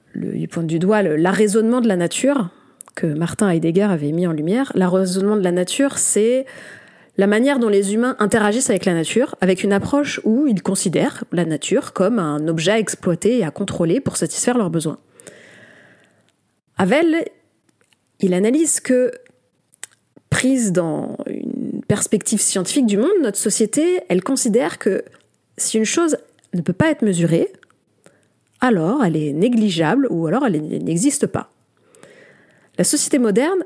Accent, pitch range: French, 170-245 Hz